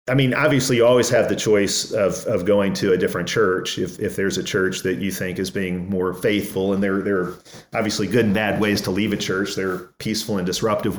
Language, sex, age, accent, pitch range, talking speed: English, male, 40-59, American, 105-125 Hz, 240 wpm